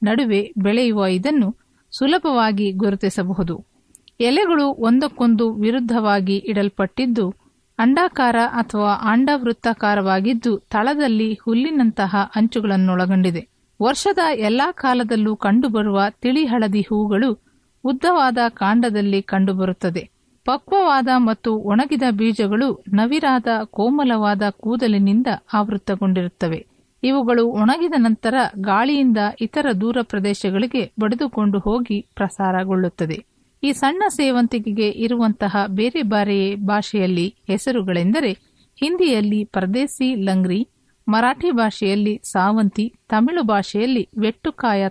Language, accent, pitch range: Kannada, native, 200-250 Hz